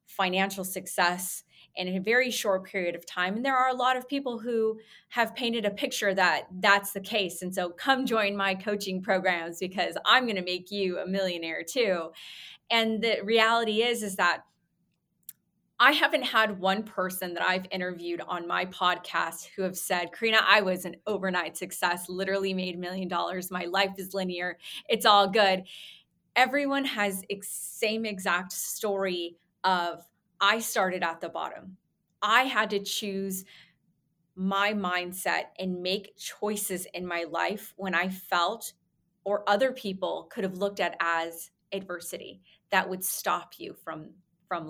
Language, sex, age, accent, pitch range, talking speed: English, female, 20-39, American, 180-205 Hz, 160 wpm